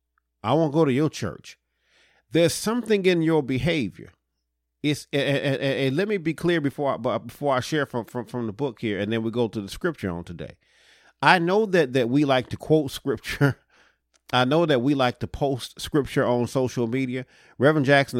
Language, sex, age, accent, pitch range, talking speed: English, male, 40-59, American, 100-150 Hz, 200 wpm